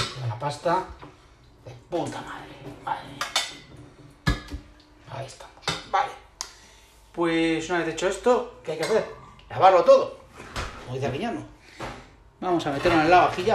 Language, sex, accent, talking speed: Spanish, male, Spanish, 135 wpm